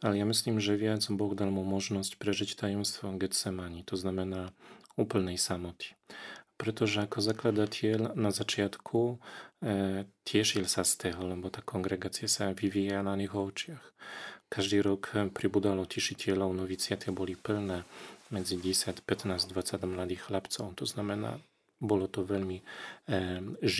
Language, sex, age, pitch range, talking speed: Slovak, male, 40-59, 95-105 Hz, 135 wpm